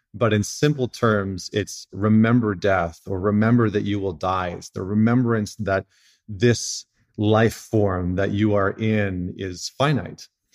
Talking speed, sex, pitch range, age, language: 150 wpm, male, 100-120 Hz, 30-49, English